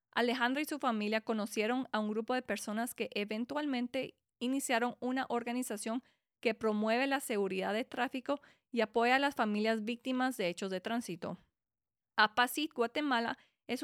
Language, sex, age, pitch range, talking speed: English, female, 20-39, 210-255 Hz, 150 wpm